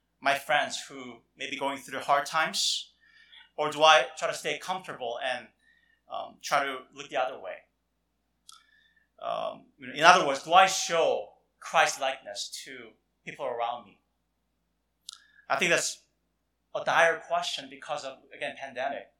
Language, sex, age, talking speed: English, male, 30-49, 145 wpm